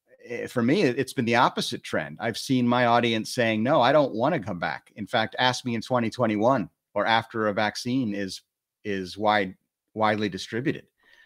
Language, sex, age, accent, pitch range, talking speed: English, male, 30-49, American, 105-135 Hz, 180 wpm